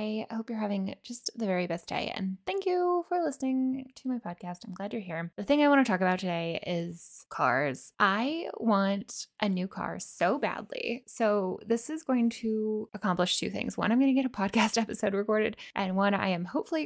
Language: English